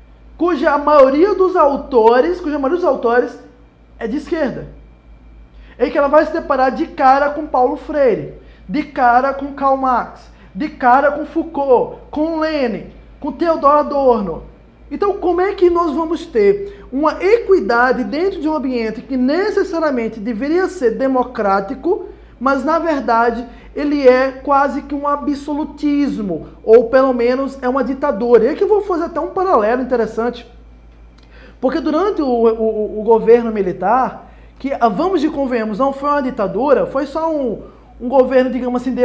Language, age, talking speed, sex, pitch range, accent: Portuguese, 20-39, 155 wpm, male, 235-305 Hz, Brazilian